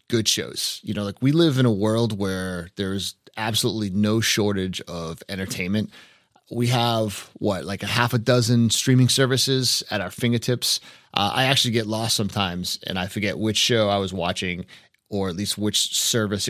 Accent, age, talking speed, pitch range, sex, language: American, 30-49, 180 wpm, 100-125 Hz, male, English